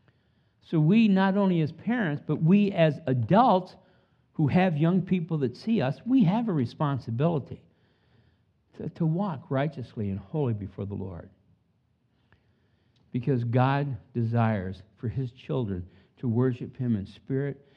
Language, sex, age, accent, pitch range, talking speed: English, male, 50-69, American, 110-155 Hz, 140 wpm